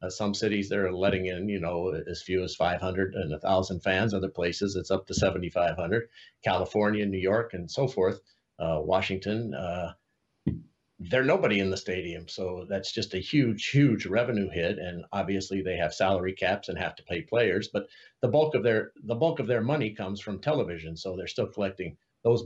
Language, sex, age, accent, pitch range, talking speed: English, male, 50-69, American, 95-115 Hz, 185 wpm